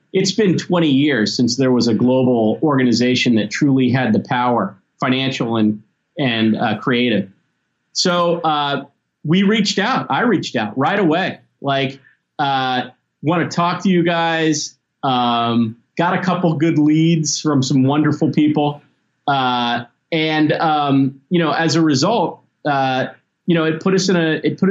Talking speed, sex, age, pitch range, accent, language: 160 wpm, male, 30-49, 140-185 Hz, American, English